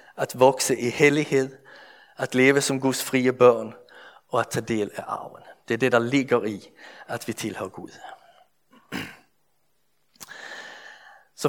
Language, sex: Danish, male